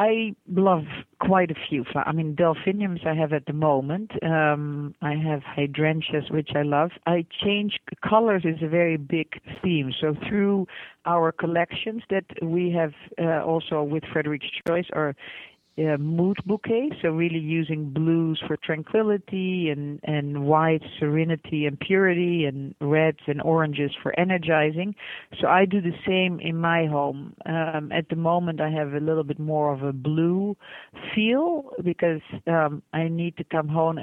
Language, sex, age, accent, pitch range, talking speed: English, female, 50-69, Dutch, 155-185 Hz, 160 wpm